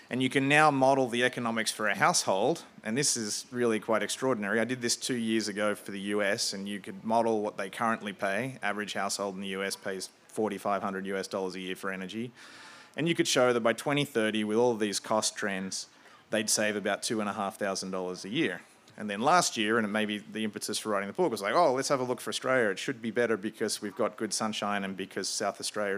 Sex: male